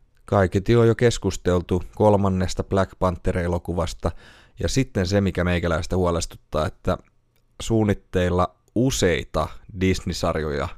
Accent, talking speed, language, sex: native, 95 wpm, Finnish, male